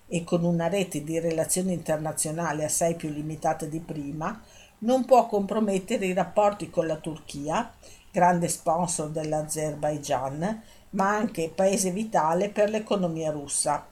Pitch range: 165-195 Hz